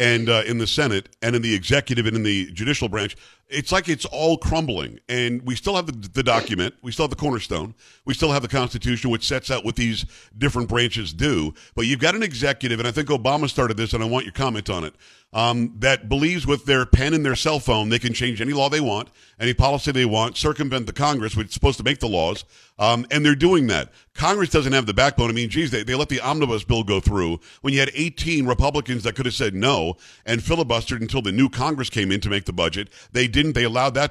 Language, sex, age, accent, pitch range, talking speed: English, male, 50-69, American, 115-145 Hz, 250 wpm